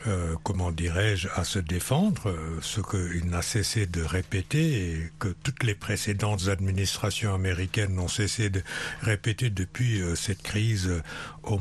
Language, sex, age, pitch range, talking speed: French, male, 60-79, 95-125 Hz, 145 wpm